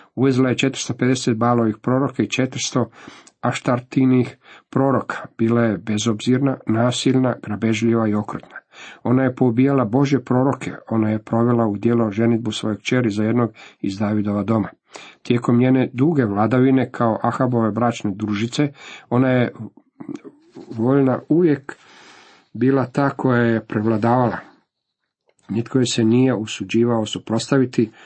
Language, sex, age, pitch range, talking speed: Croatian, male, 50-69, 110-125 Hz, 120 wpm